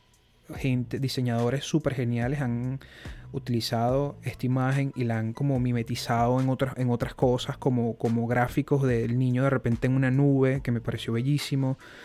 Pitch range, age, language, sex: 115-135 Hz, 30-49, Spanish, male